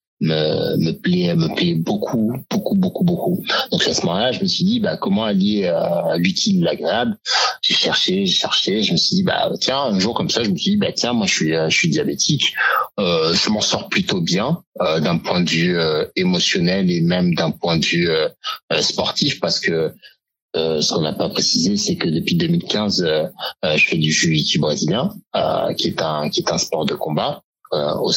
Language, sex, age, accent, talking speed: French, male, 60-79, French, 215 wpm